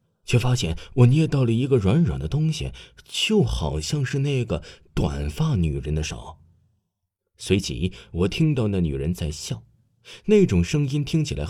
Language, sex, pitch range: Chinese, male, 80-135 Hz